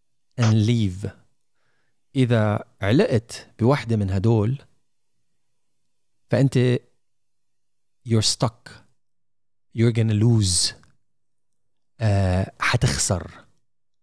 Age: 40-59